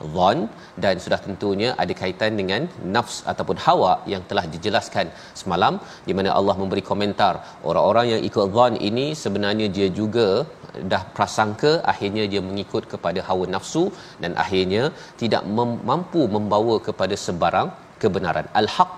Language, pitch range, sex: Malayalam, 100-125 Hz, male